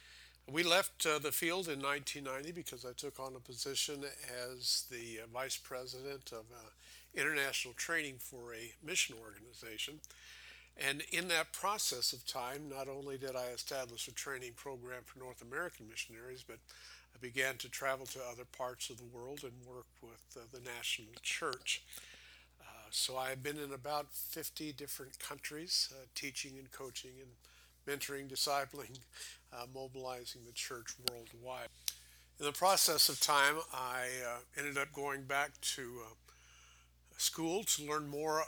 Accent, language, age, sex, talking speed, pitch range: American, English, 60-79, male, 155 wpm, 120-140 Hz